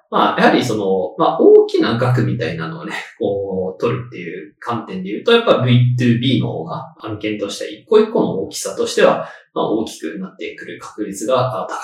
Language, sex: Japanese, male